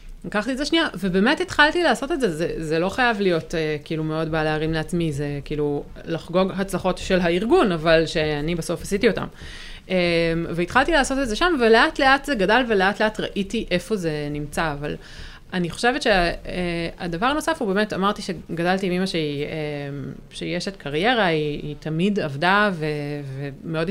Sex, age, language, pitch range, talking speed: female, 30-49, Hebrew, 160-215 Hz, 175 wpm